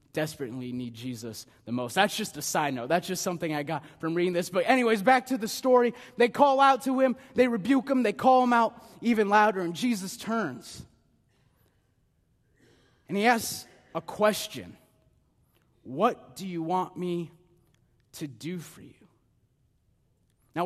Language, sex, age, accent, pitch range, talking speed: English, male, 30-49, American, 130-195 Hz, 165 wpm